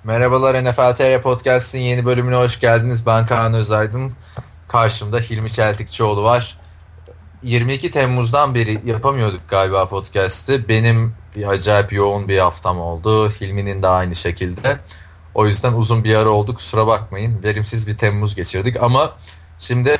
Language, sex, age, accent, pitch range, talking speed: Turkish, male, 30-49, native, 95-125 Hz, 140 wpm